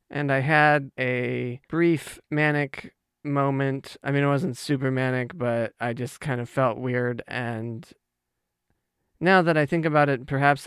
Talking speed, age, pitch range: 155 wpm, 20-39, 125-145 Hz